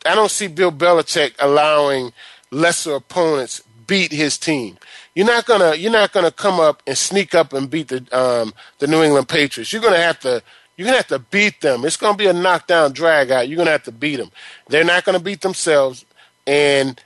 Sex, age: male, 30-49